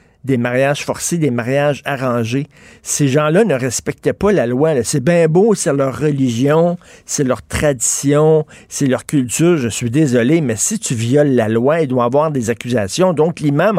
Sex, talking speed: male, 185 wpm